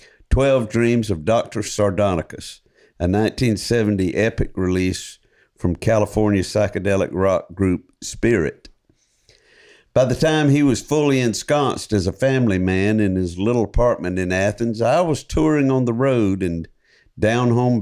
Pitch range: 95-120 Hz